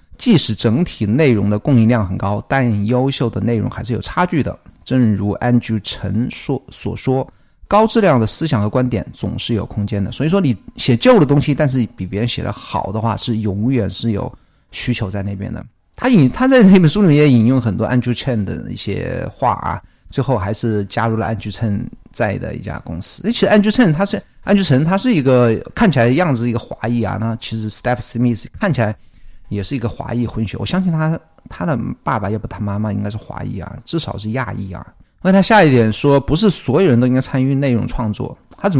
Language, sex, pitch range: Chinese, male, 105-135 Hz